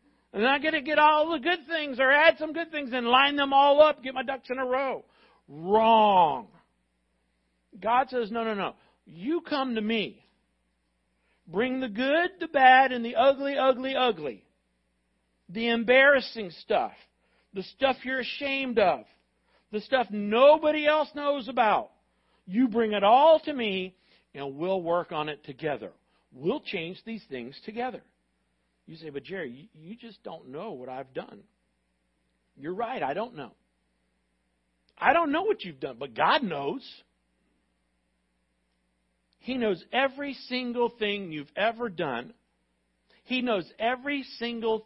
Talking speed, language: 155 wpm, English